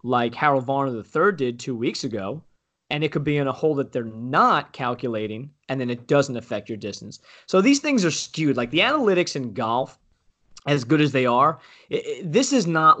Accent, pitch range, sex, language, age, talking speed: American, 120-150 Hz, male, English, 30-49, 210 wpm